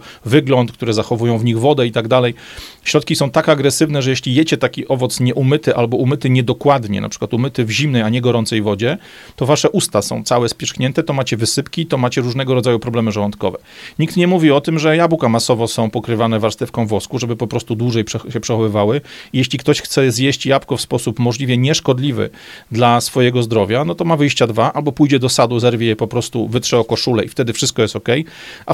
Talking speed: 205 wpm